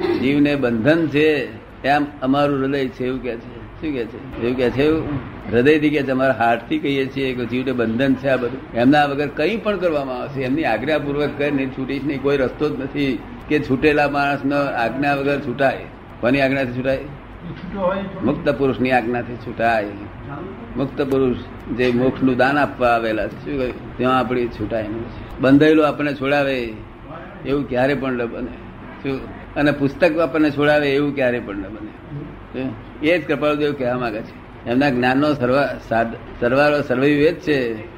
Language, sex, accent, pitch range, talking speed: Gujarati, male, native, 120-145 Hz, 75 wpm